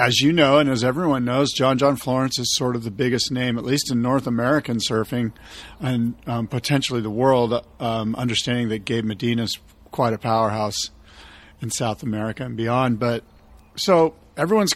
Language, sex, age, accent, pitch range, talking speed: English, male, 40-59, American, 120-155 Hz, 180 wpm